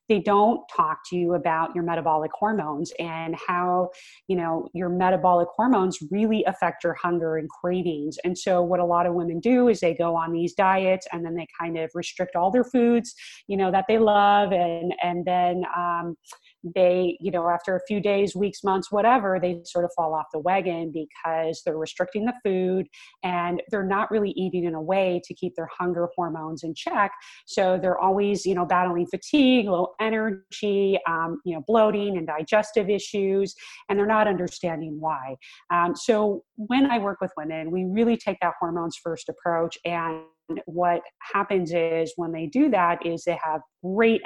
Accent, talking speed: American, 185 wpm